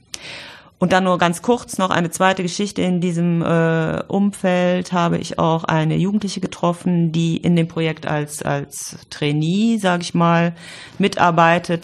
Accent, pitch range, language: German, 165-185 Hz, German